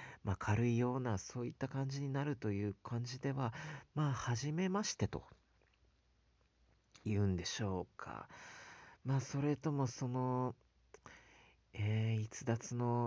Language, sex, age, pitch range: Japanese, male, 40-59, 90-125 Hz